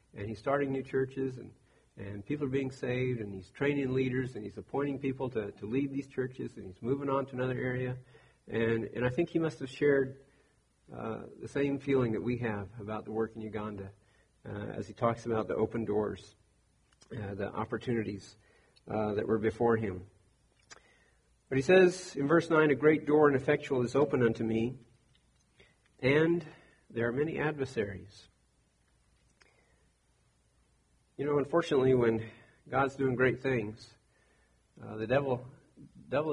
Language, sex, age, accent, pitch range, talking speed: English, male, 50-69, American, 105-135 Hz, 165 wpm